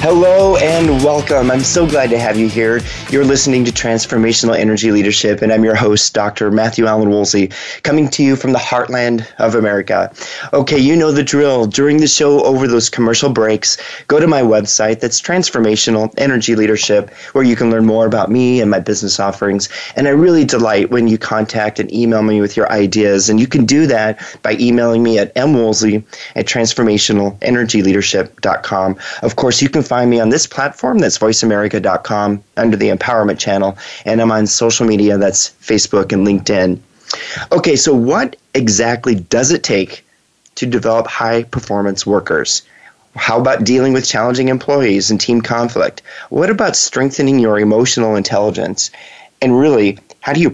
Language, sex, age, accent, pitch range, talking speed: English, male, 30-49, American, 105-125 Hz, 170 wpm